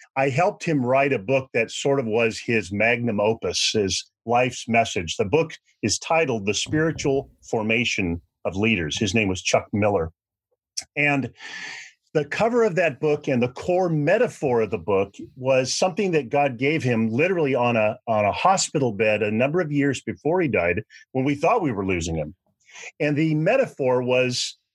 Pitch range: 115-160 Hz